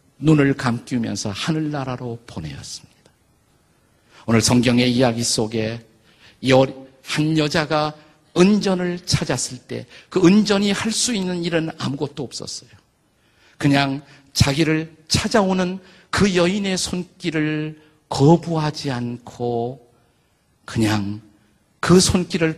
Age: 50-69